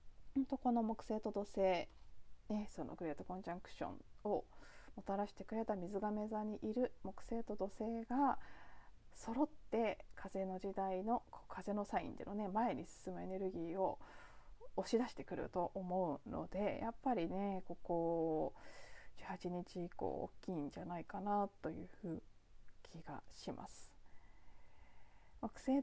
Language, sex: Japanese, female